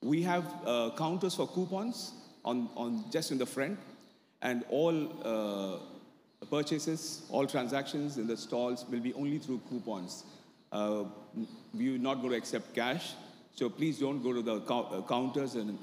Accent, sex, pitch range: Indian, male, 110-145 Hz